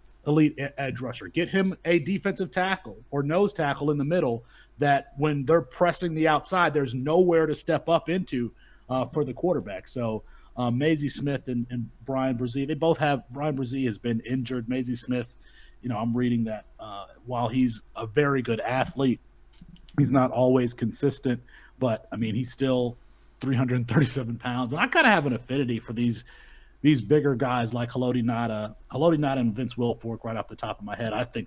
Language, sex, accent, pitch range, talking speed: English, male, American, 115-145 Hz, 190 wpm